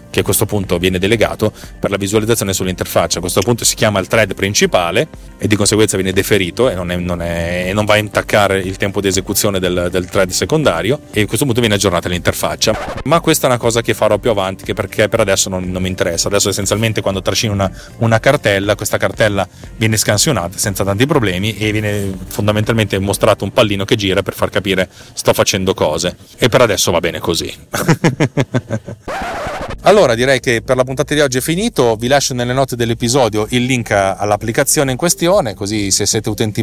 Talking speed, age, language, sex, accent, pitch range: 200 wpm, 30-49, Italian, male, native, 100-125 Hz